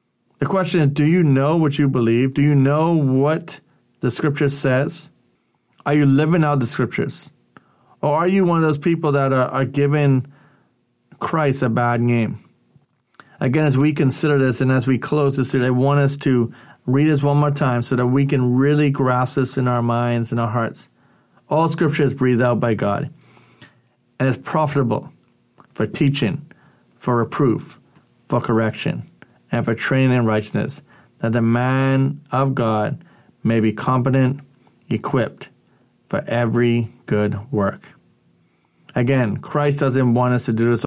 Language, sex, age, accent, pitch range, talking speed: English, male, 40-59, American, 120-140 Hz, 165 wpm